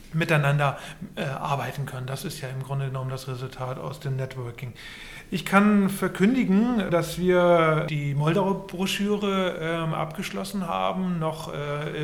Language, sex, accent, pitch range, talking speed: German, male, German, 150-175 Hz, 130 wpm